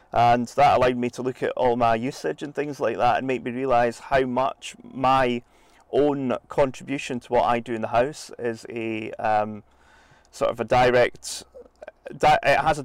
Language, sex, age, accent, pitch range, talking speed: English, male, 30-49, British, 115-130 Hz, 185 wpm